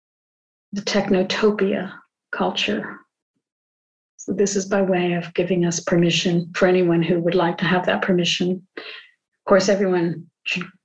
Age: 50-69